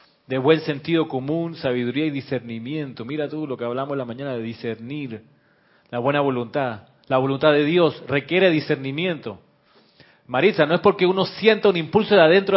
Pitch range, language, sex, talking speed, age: 125-165 Hz, Spanish, male, 170 wpm, 40-59